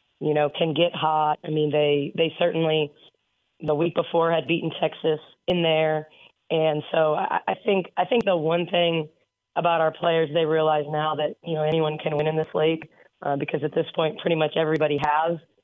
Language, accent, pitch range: English, American, 155-175 Hz